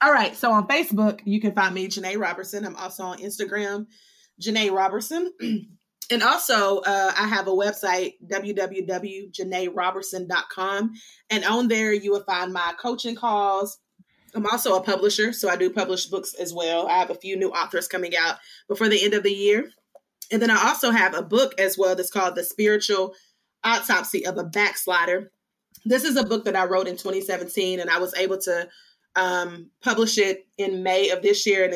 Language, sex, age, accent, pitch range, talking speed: English, female, 20-39, American, 185-215 Hz, 185 wpm